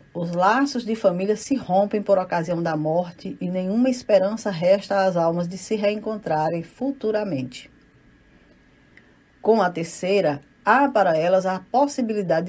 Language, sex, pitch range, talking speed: Portuguese, female, 155-210 Hz, 135 wpm